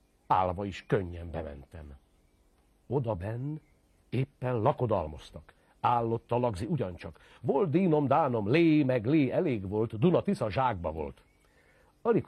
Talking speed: 110 wpm